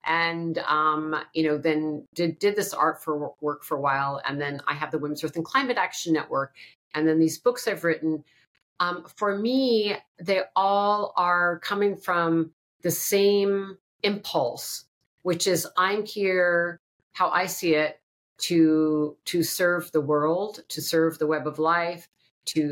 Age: 50-69